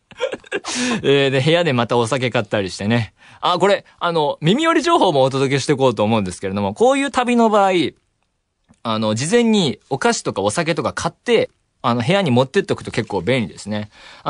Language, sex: Japanese, male